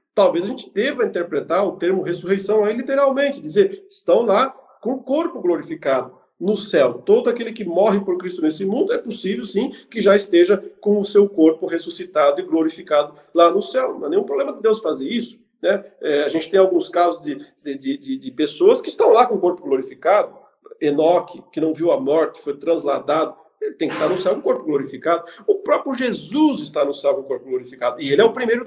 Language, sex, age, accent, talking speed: Portuguese, male, 50-69, Brazilian, 220 wpm